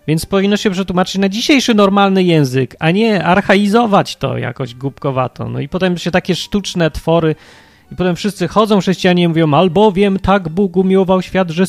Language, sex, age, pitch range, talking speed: Polish, male, 30-49, 145-190 Hz, 170 wpm